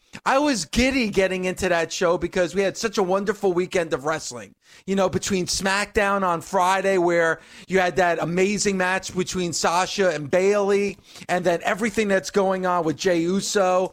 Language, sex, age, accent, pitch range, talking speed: English, male, 40-59, American, 170-205 Hz, 175 wpm